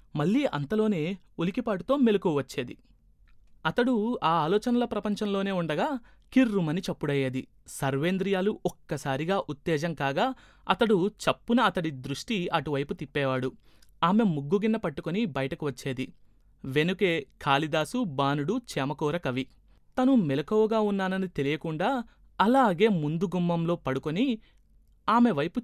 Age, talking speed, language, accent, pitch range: 30-49, 90 wpm, Telugu, native, 145-220 Hz